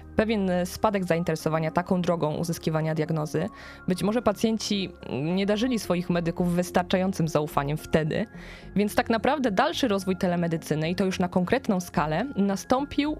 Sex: female